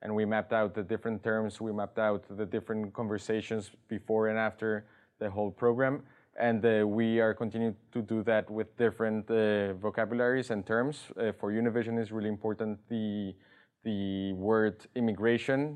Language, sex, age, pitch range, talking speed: English, male, 20-39, 105-115 Hz, 165 wpm